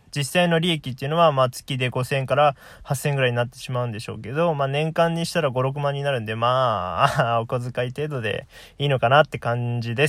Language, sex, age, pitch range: Japanese, male, 20-39, 120-150 Hz